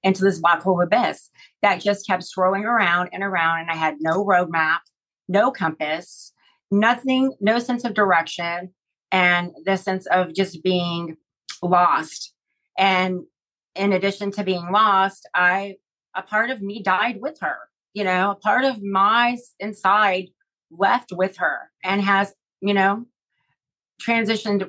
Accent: American